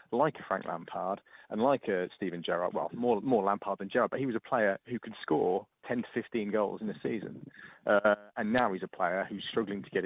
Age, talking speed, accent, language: 30-49, 245 wpm, British, English